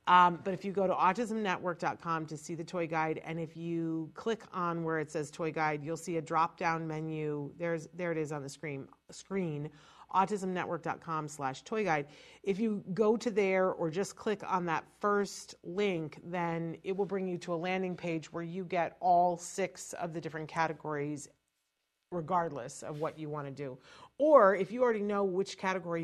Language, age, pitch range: English, 40-59, 155-185 Hz